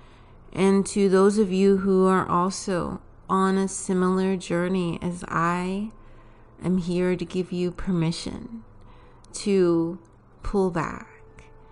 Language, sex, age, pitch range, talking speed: English, female, 30-49, 160-190 Hz, 120 wpm